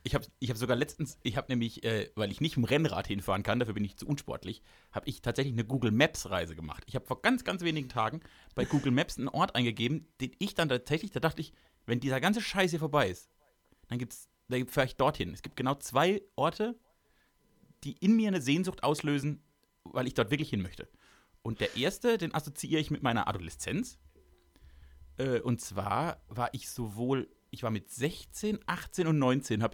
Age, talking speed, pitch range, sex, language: 30-49, 205 wpm, 120-165 Hz, male, German